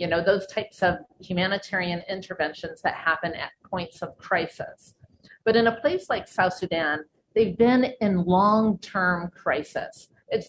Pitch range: 185-240 Hz